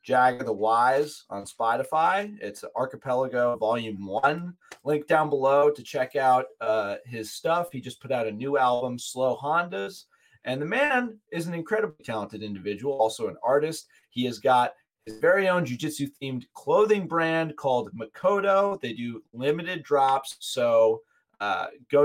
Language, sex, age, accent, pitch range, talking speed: English, male, 30-49, American, 110-160 Hz, 155 wpm